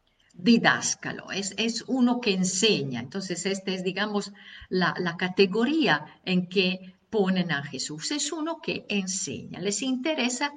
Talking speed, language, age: 135 wpm, Spanish, 50-69